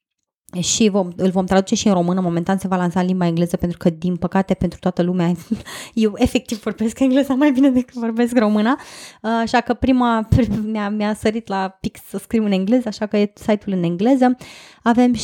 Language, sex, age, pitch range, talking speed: Romanian, female, 20-39, 185-235 Hz, 195 wpm